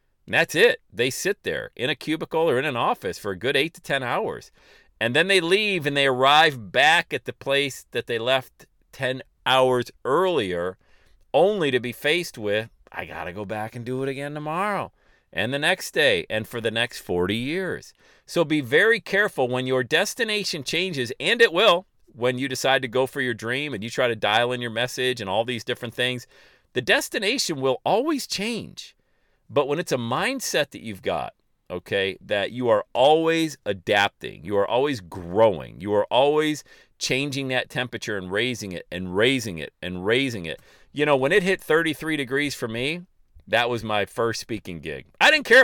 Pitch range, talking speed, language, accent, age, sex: 110-155 Hz, 195 wpm, English, American, 40-59, male